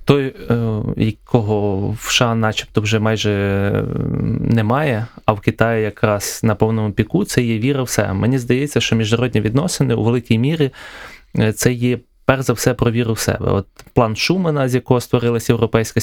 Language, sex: Ukrainian, male